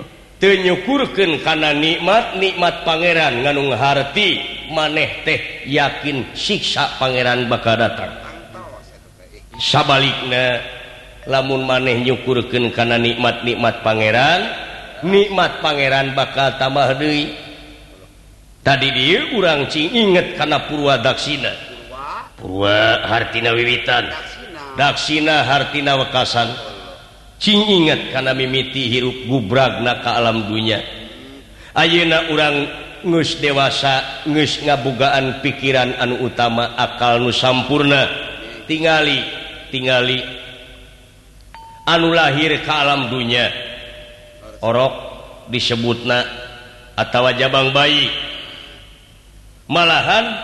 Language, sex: Indonesian, male